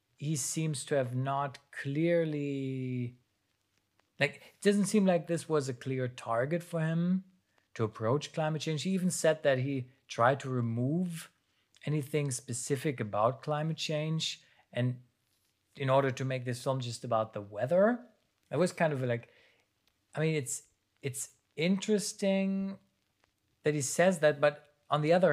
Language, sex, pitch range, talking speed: English, male, 120-160 Hz, 150 wpm